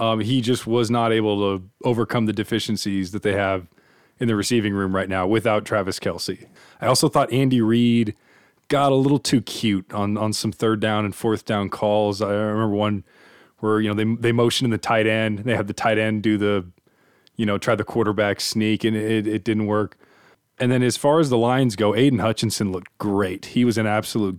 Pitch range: 105-120 Hz